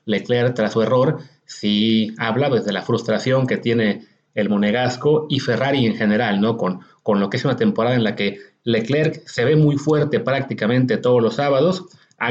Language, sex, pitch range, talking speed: Spanish, male, 115-150 Hz, 190 wpm